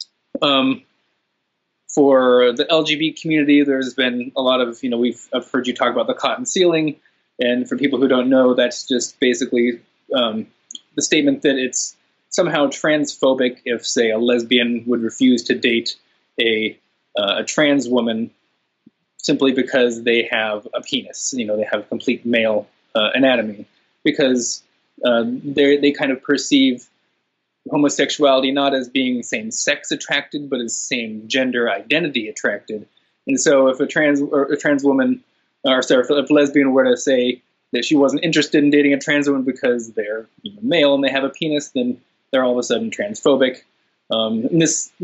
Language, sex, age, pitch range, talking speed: English, male, 20-39, 125-145 Hz, 165 wpm